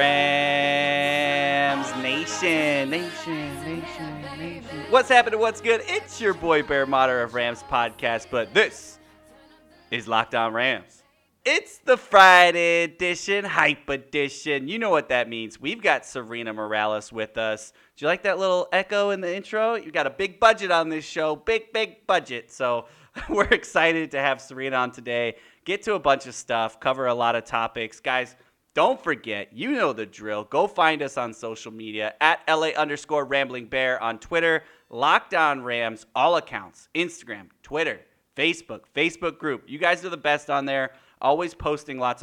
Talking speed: 165 wpm